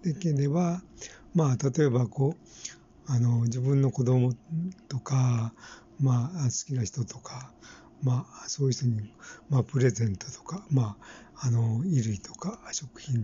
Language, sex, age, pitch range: Japanese, male, 60-79, 115-160 Hz